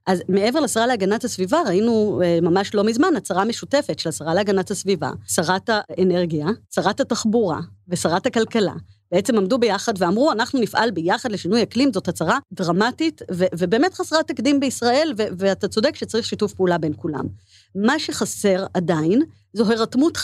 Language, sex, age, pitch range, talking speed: Hebrew, female, 30-49, 180-230 Hz, 150 wpm